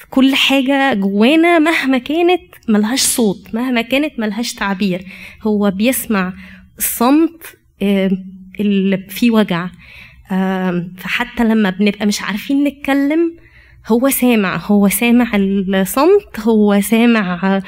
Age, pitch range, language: 20-39, 205-260 Hz, Arabic